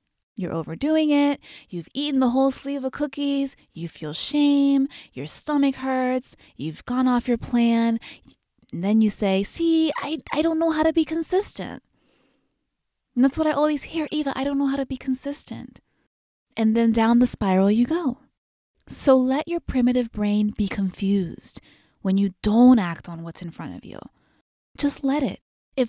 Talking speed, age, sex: 175 wpm, 20-39, female